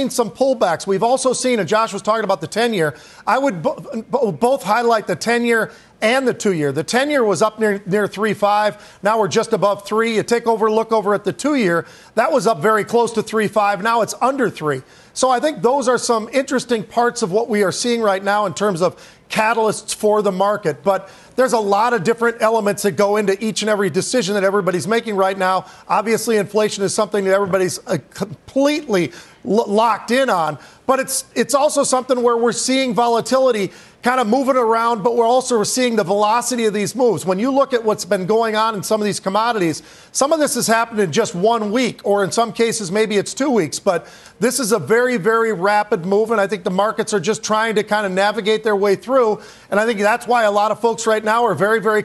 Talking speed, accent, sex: 230 wpm, American, male